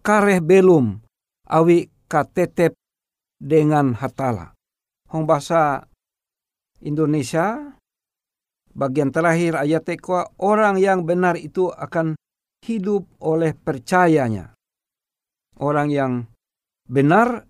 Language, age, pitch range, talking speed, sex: Indonesian, 60-79, 140-185 Hz, 80 wpm, male